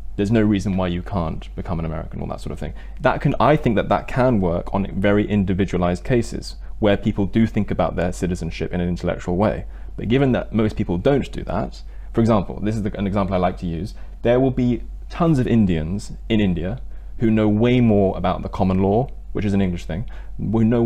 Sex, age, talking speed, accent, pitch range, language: male, 20-39, 225 wpm, British, 90-110 Hz, English